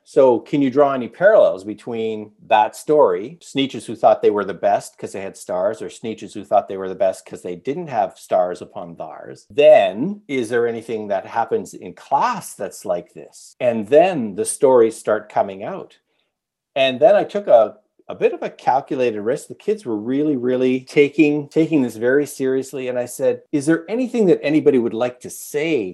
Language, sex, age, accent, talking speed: English, male, 50-69, American, 200 wpm